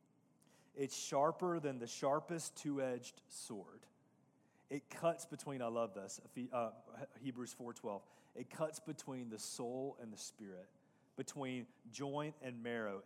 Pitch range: 120-140 Hz